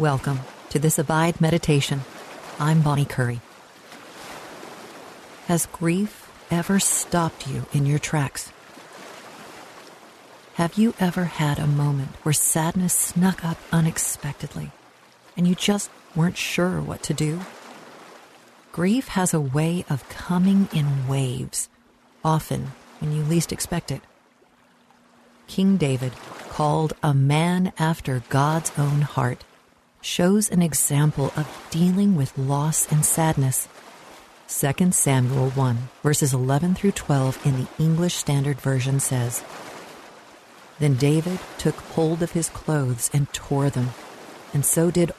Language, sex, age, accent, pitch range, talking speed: English, female, 50-69, American, 140-170 Hz, 125 wpm